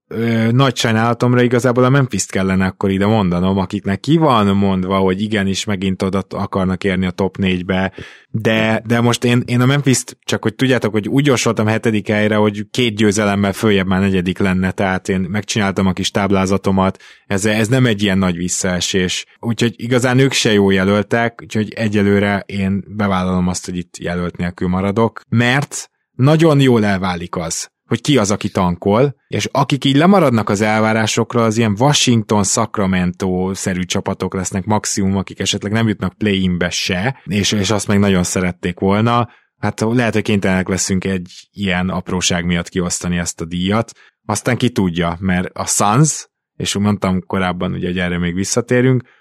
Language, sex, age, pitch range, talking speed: Hungarian, male, 20-39, 95-115 Hz, 165 wpm